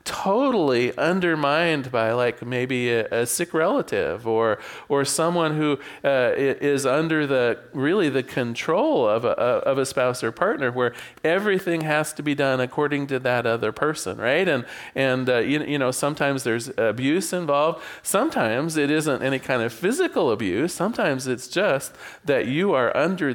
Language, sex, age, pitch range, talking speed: English, male, 40-59, 135-185 Hz, 160 wpm